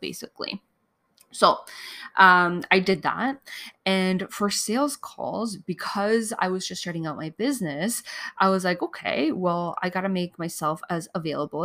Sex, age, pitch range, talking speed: female, 20-39, 160-200 Hz, 155 wpm